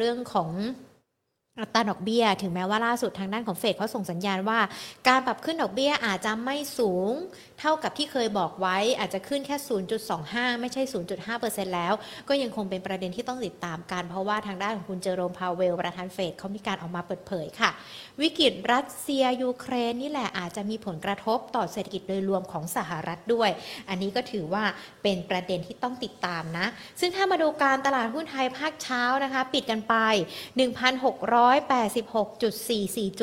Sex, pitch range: female, 190-250 Hz